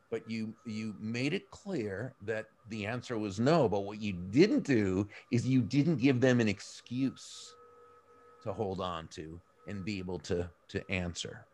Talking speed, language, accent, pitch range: 170 wpm, English, American, 100-125 Hz